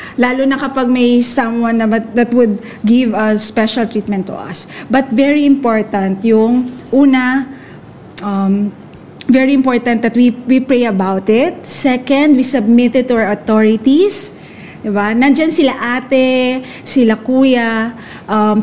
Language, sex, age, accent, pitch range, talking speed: Filipino, female, 20-39, native, 215-260 Hz, 135 wpm